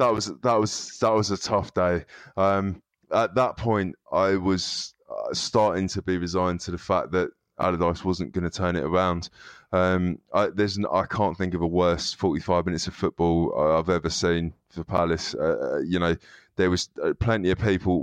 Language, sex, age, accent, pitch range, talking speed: English, male, 20-39, British, 85-100 Hz, 195 wpm